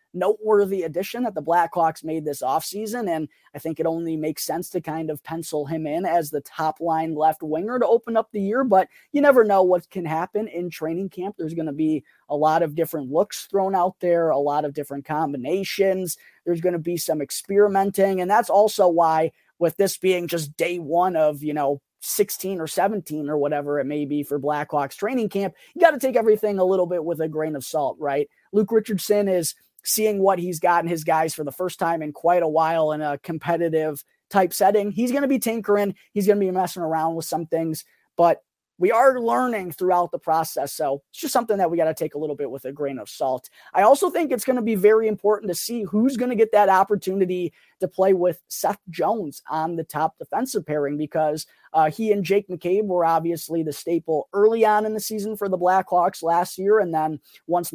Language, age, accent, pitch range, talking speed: English, 20-39, American, 160-200 Hz, 220 wpm